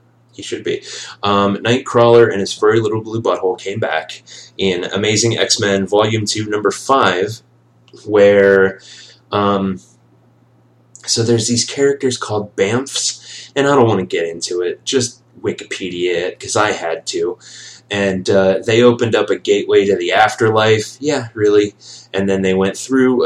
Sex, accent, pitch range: male, American, 95-140 Hz